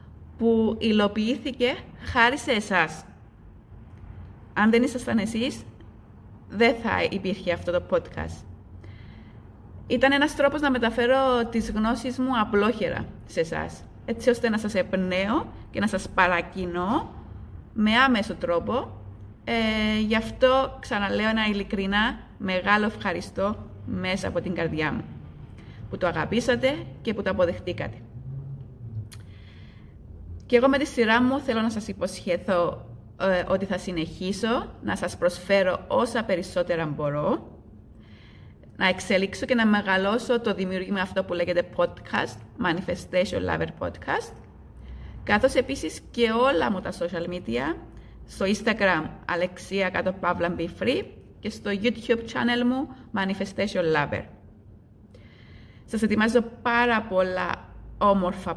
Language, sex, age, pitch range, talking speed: Greek, female, 30-49, 165-230 Hz, 120 wpm